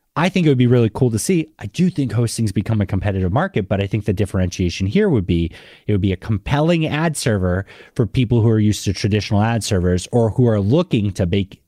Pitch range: 105-140 Hz